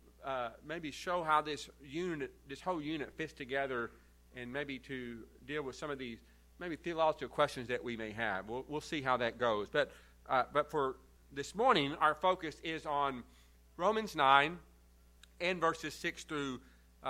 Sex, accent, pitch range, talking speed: male, American, 110-180 Hz, 170 wpm